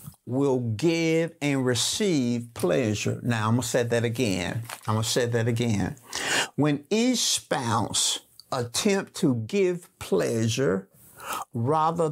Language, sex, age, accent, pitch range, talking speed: English, male, 50-69, American, 120-165 Hz, 130 wpm